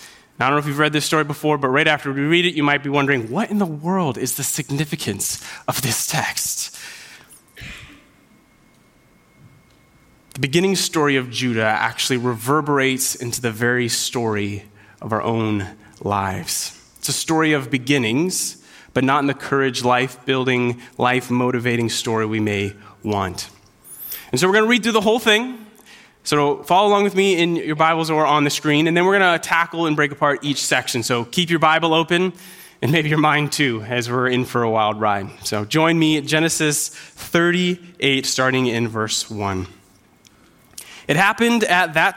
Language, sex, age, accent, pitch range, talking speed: English, male, 20-39, American, 120-160 Hz, 175 wpm